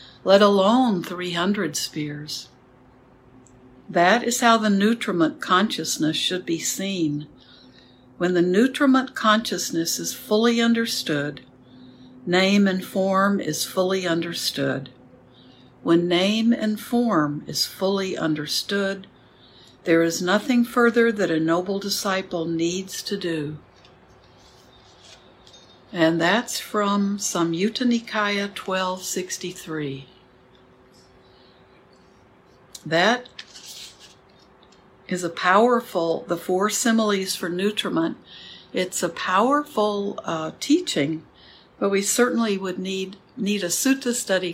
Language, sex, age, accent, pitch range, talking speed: English, female, 60-79, American, 150-205 Hz, 100 wpm